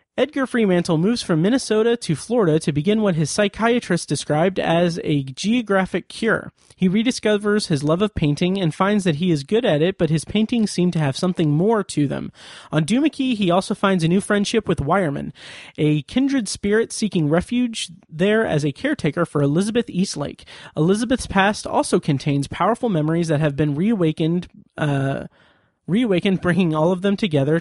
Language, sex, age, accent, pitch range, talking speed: English, male, 30-49, American, 155-210 Hz, 175 wpm